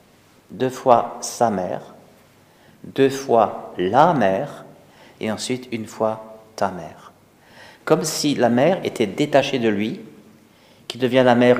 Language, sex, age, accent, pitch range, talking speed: French, male, 50-69, French, 100-125 Hz, 135 wpm